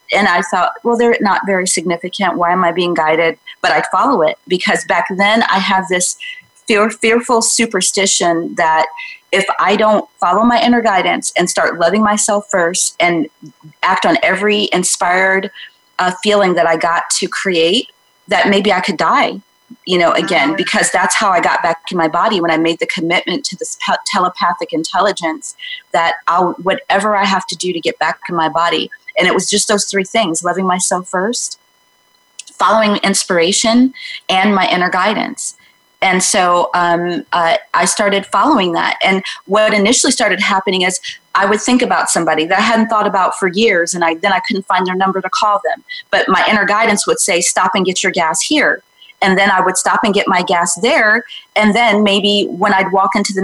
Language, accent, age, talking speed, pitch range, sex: English, American, 30-49, 195 wpm, 180-235 Hz, female